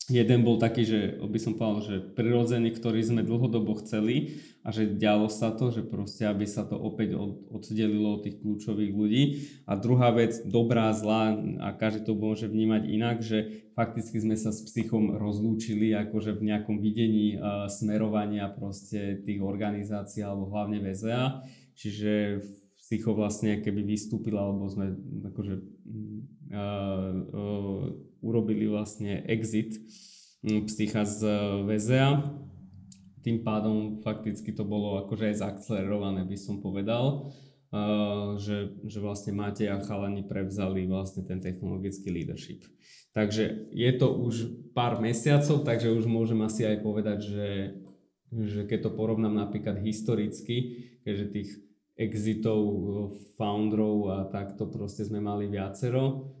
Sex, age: male, 20-39